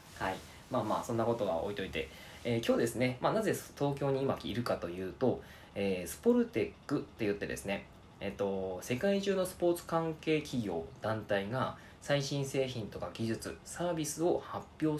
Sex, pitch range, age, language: male, 100-155 Hz, 20-39, Japanese